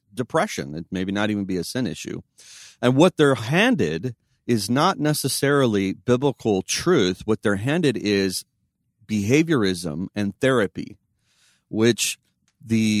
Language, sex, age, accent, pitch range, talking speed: English, male, 40-59, American, 95-120 Hz, 125 wpm